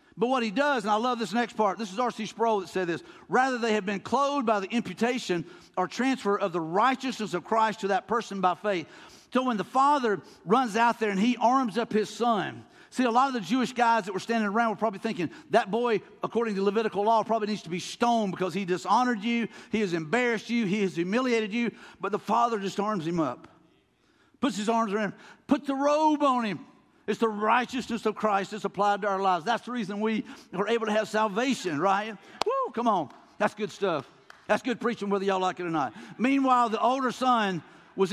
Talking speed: 225 wpm